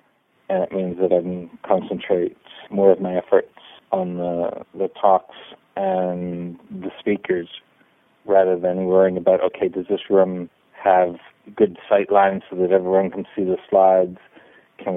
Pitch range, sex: 90-100 Hz, male